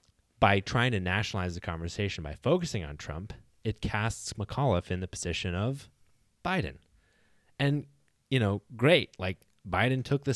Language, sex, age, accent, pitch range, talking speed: English, male, 20-39, American, 95-130 Hz, 150 wpm